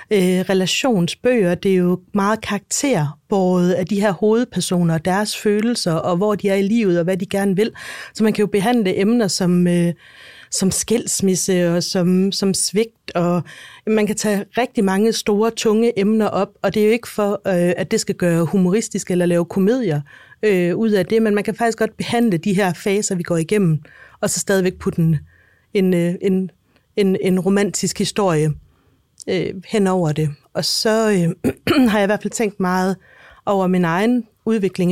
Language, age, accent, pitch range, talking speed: Danish, 30-49, native, 175-210 Hz, 180 wpm